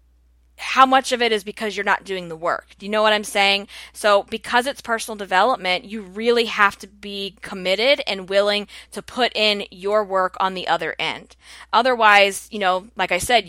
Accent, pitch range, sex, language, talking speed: American, 185-225 Hz, female, English, 200 wpm